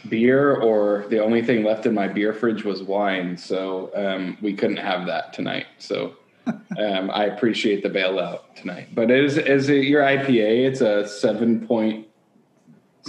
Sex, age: male, 20-39